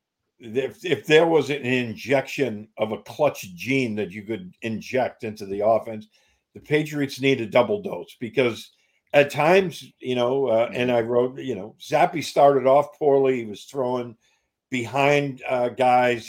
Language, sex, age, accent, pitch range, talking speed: English, male, 50-69, American, 120-145 Hz, 160 wpm